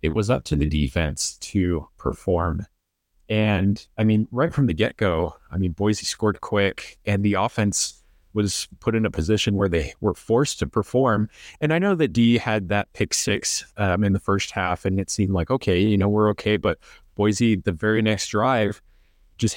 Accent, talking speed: American, 195 wpm